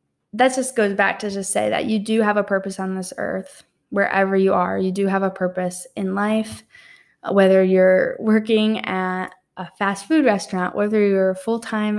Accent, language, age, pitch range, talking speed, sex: American, English, 10-29, 190-235 Hz, 185 wpm, female